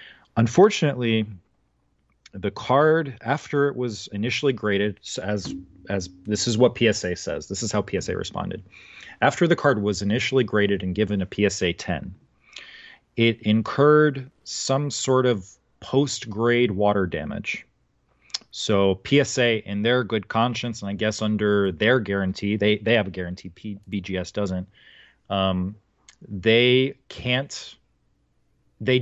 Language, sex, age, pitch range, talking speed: English, male, 30-49, 95-120 Hz, 130 wpm